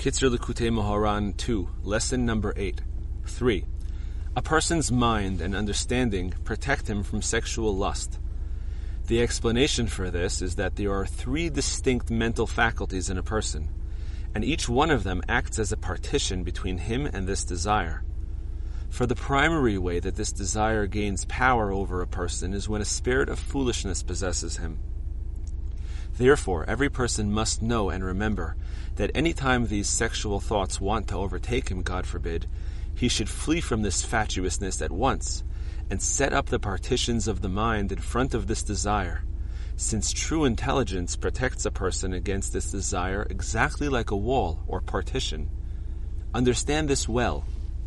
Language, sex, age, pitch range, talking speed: English, male, 40-59, 80-110 Hz, 155 wpm